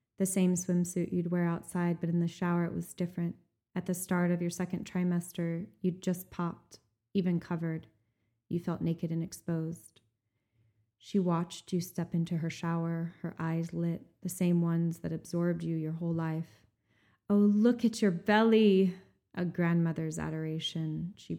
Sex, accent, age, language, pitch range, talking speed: female, American, 20-39, English, 155-180 Hz, 165 wpm